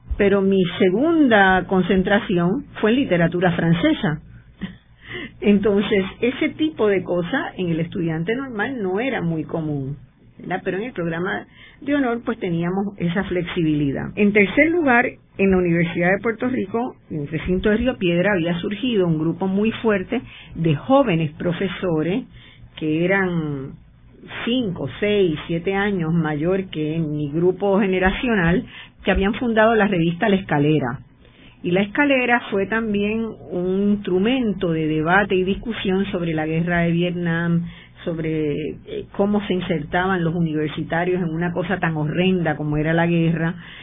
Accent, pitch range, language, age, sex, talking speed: American, 170-215 Hz, Spanish, 50-69, female, 145 wpm